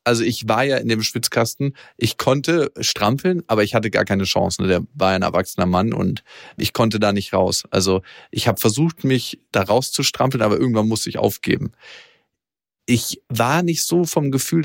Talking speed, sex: 185 wpm, male